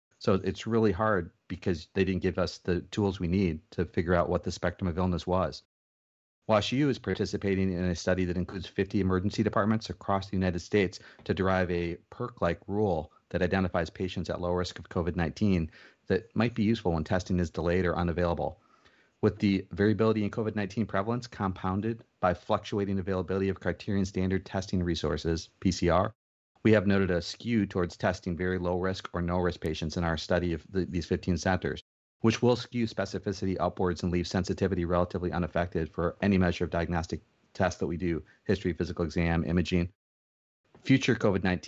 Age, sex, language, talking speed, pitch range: 40-59, male, English, 175 wpm, 90-100 Hz